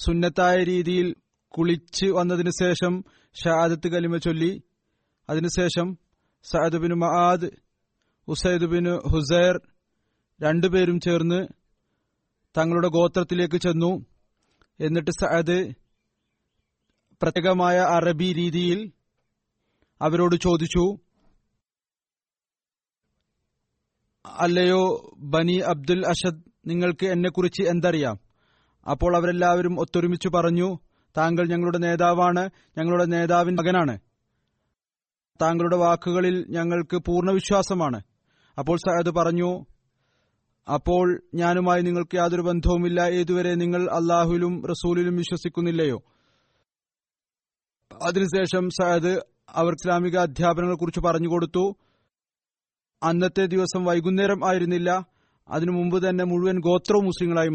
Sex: male